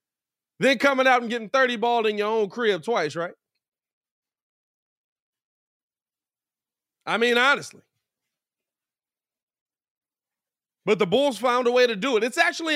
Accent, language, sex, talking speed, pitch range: American, English, male, 120 wpm, 175-245 Hz